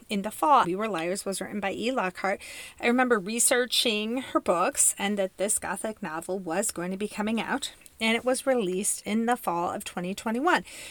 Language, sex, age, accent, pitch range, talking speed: English, female, 30-49, American, 195-255 Hz, 200 wpm